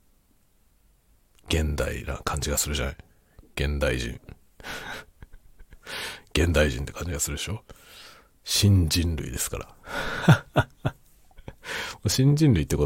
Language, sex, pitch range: Japanese, male, 70-105 Hz